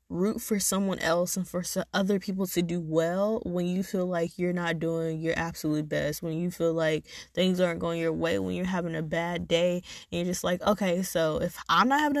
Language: English